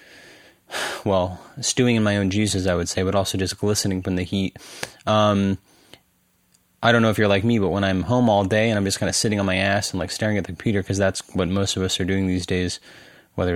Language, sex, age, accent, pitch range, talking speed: English, male, 30-49, American, 95-110 Hz, 250 wpm